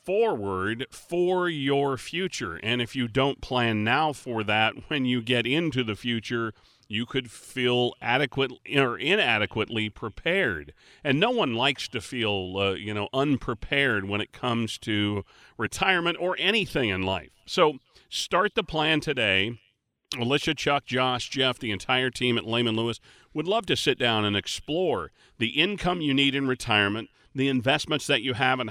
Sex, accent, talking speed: male, American, 165 wpm